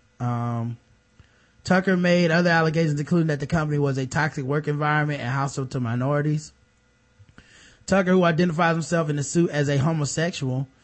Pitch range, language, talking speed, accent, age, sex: 130-165 Hz, English, 155 wpm, American, 20-39, male